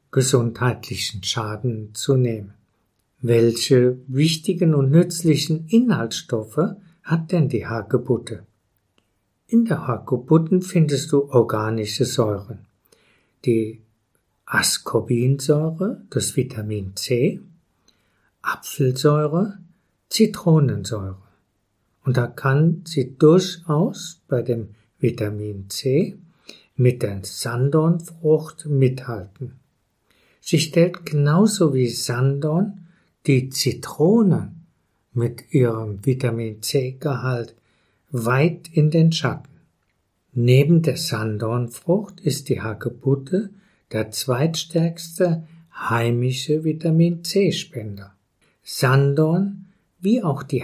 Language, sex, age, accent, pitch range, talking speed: German, male, 50-69, German, 115-165 Hz, 85 wpm